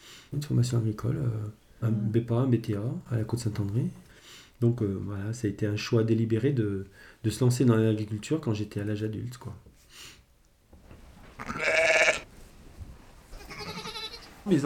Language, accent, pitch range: French, French, 110-125 Hz